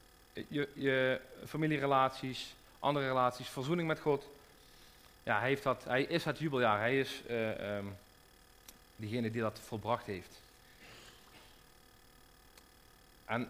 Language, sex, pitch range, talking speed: Dutch, male, 105-125 Hz, 115 wpm